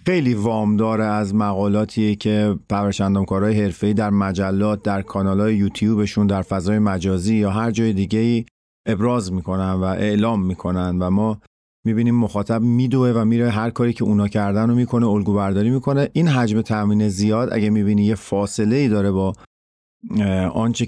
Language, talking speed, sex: Persian, 150 wpm, male